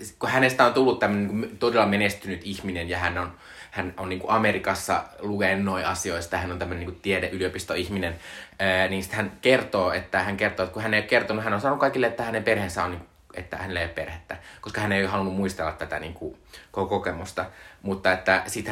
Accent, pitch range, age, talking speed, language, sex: native, 90-105 Hz, 20-39, 200 wpm, Finnish, male